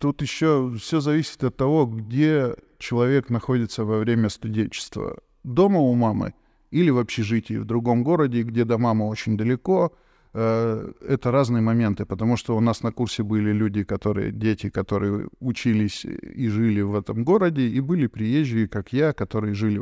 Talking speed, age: 160 wpm, 20-39